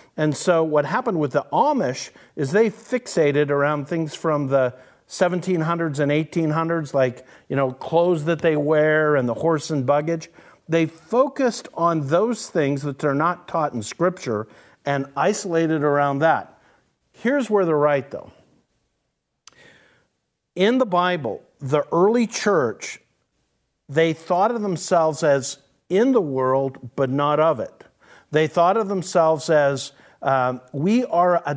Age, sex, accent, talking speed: 50-69, male, American, 145 wpm